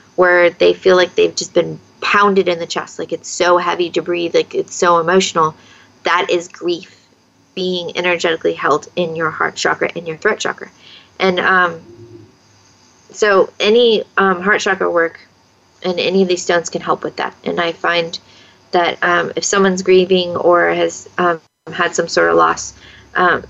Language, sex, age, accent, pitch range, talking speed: English, female, 20-39, American, 175-190 Hz, 175 wpm